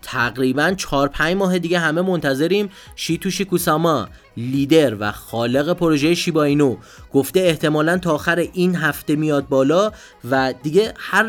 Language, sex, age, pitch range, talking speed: Persian, male, 30-49, 135-175 Hz, 140 wpm